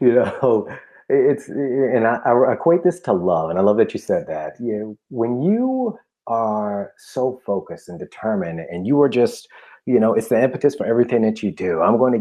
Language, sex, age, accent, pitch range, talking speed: English, male, 30-49, American, 95-125 Hz, 210 wpm